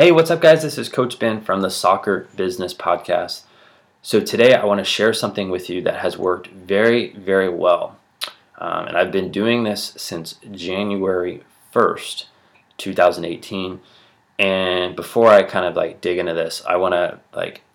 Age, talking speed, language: 20-39, 170 wpm, English